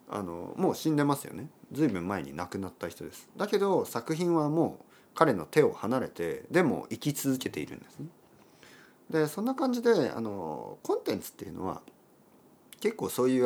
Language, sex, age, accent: Japanese, male, 40-59, native